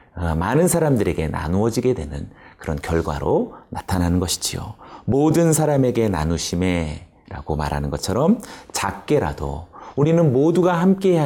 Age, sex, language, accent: 30-49, male, Korean, native